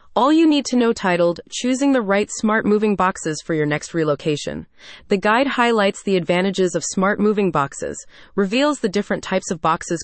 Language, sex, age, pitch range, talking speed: English, female, 30-49, 170-235 Hz, 185 wpm